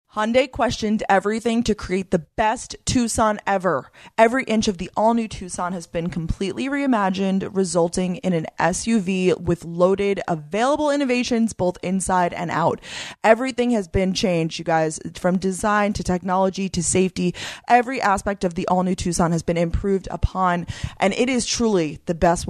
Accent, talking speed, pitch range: American, 155 wpm, 165-200 Hz